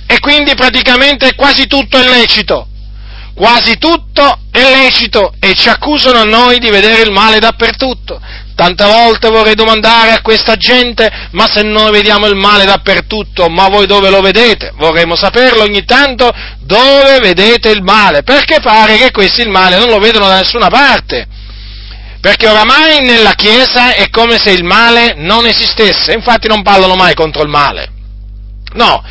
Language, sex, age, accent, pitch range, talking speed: Italian, male, 40-59, native, 200-255 Hz, 165 wpm